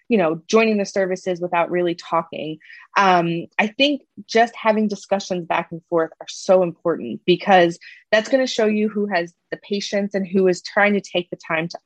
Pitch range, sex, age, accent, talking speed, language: 175-230 Hz, female, 20-39, American, 195 wpm, English